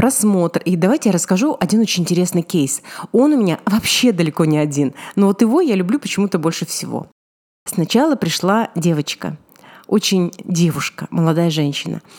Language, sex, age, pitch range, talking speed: Russian, female, 30-49, 170-220 Hz, 155 wpm